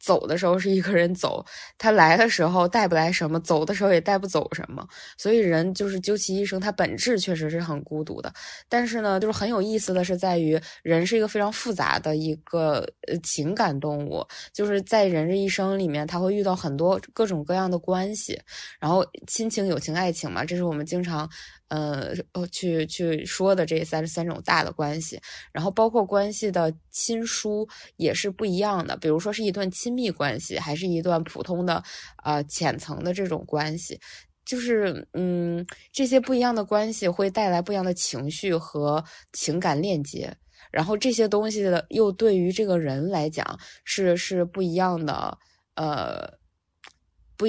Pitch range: 160-205 Hz